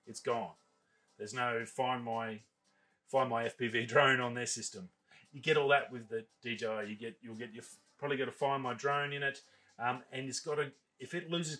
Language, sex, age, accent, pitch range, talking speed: English, male, 30-49, Australian, 120-140 Hz, 210 wpm